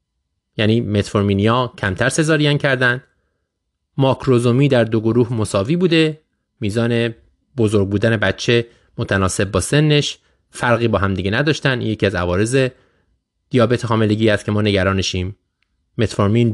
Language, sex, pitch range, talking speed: Persian, male, 95-135 Hz, 115 wpm